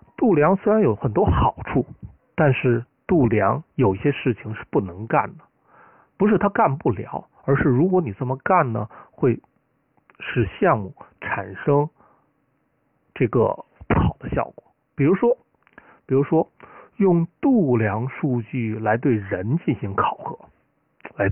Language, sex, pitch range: Chinese, male, 120-175 Hz